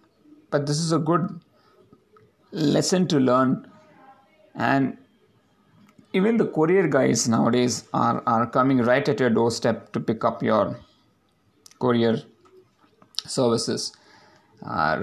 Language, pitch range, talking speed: English, 115-140 Hz, 110 wpm